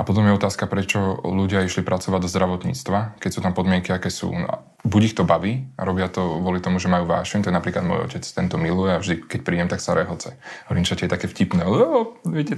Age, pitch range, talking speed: 20-39, 90-100 Hz, 235 wpm